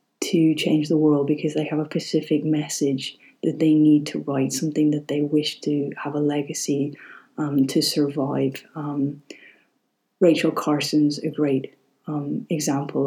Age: 30-49